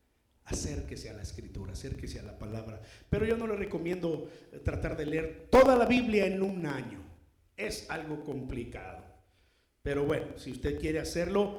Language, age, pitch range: Spanish, 50-69, 160-250 Hz